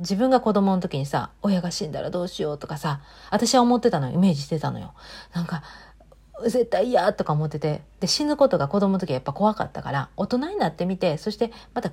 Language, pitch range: Japanese, 155-220 Hz